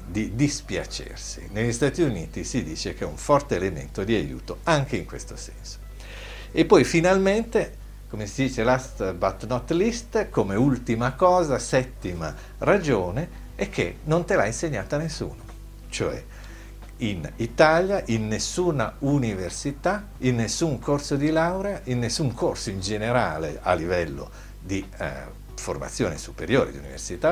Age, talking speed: 50-69, 140 wpm